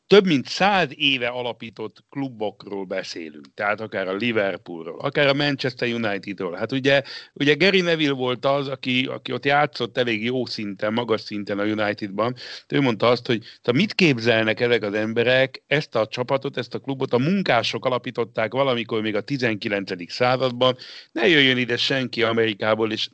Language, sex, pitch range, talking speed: Hungarian, male, 115-145 Hz, 165 wpm